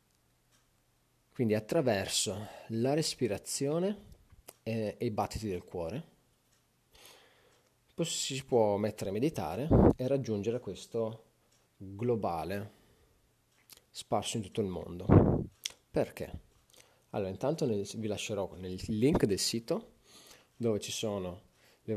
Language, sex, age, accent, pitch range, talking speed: Italian, male, 30-49, native, 100-130 Hz, 105 wpm